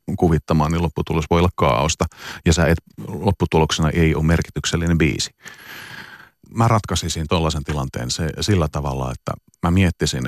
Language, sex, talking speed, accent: Finnish, male, 135 wpm, native